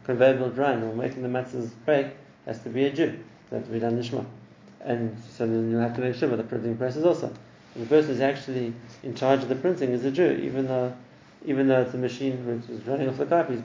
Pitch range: 120-140 Hz